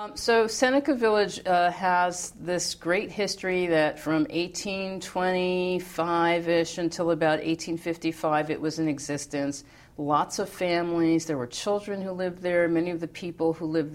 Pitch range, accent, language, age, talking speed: 145-175 Hz, American, English, 50-69, 140 wpm